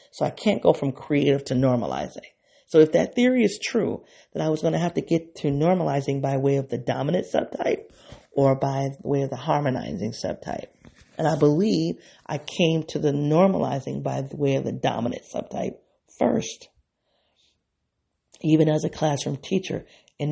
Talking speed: 170 wpm